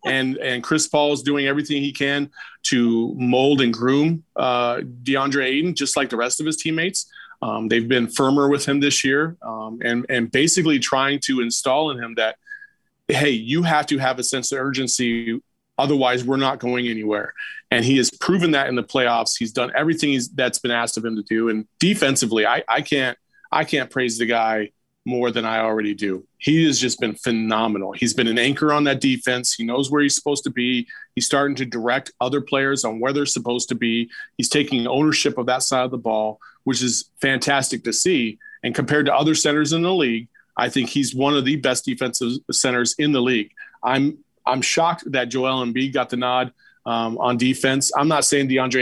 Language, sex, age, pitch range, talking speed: English, male, 30-49, 120-140 Hz, 210 wpm